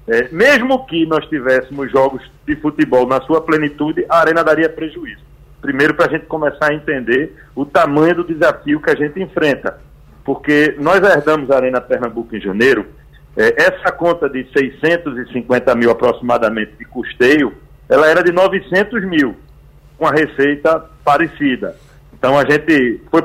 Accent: Brazilian